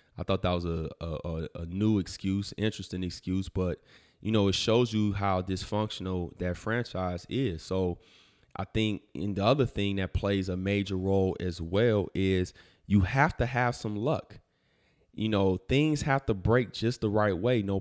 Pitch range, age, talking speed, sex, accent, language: 95-115 Hz, 20-39, 180 wpm, male, American, English